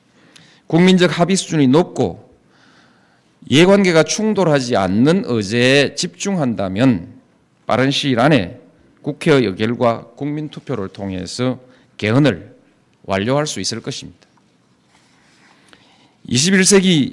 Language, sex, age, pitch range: Korean, male, 40-59, 115-175 Hz